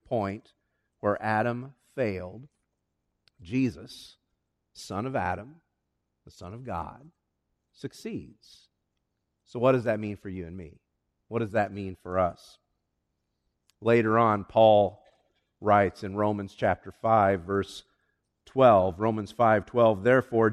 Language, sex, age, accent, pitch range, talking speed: English, male, 50-69, American, 115-175 Hz, 125 wpm